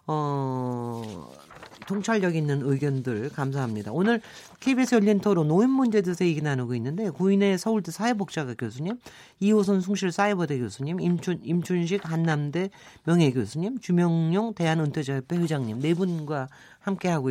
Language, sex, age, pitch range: Korean, male, 40-59, 140-230 Hz